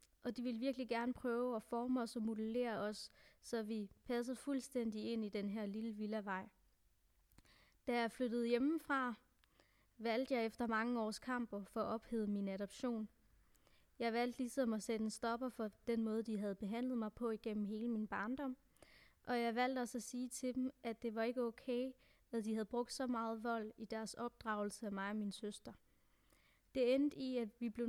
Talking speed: 195 wpm